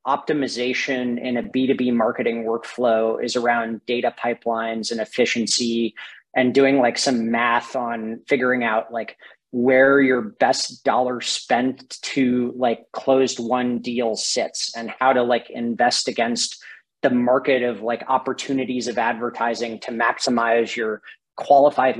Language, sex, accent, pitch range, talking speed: English, male, American, 120-140 Hz, 135 wpm